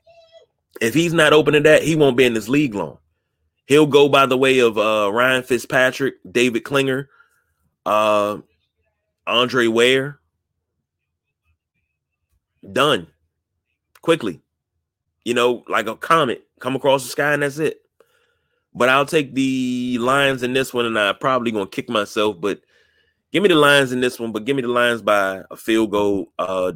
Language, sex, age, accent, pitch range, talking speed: English, male, 30-49, American, 105-140 Hz, 165 wpm